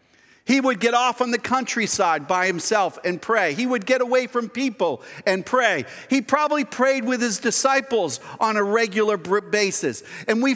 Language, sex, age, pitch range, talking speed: English, male, 50-69, 210-255 Hz, 175 wpm